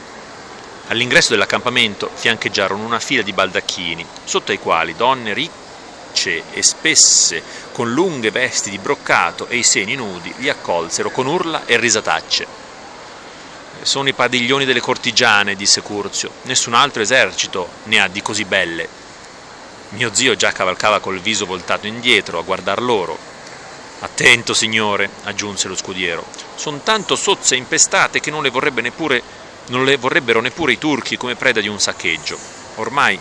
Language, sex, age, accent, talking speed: Italian, male, 40-59, native, 150 wpm